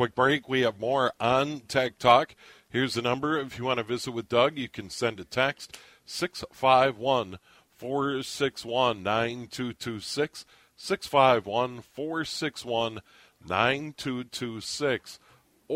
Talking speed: 95 wpm